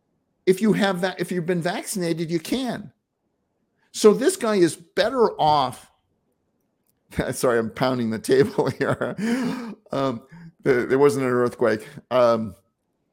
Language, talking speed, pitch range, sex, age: English, 135 wpm, 115-170 Hz, male, 50-69